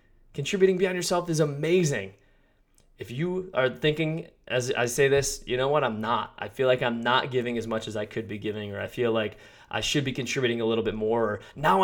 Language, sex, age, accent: English, male, 20-39, American